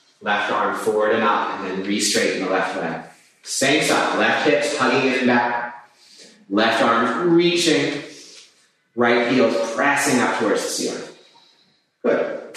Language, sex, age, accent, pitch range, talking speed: English, male, 30-49, American, 105-160 Hz, 150 wpm